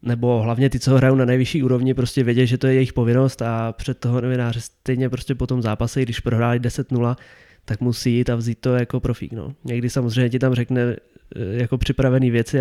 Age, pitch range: 20-39, 120-135 Hz